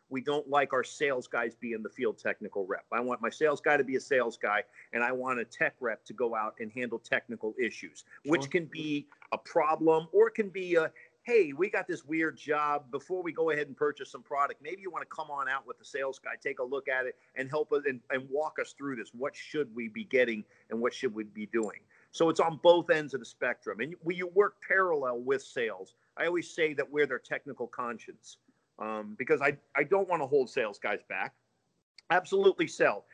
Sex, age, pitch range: male, 50-69, 120-180 Hz